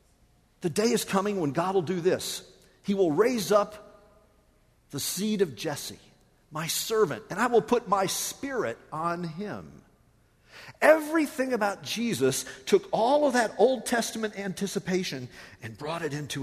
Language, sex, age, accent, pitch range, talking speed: English, male, 50-69, American, 180-235 Hz, 150 wpm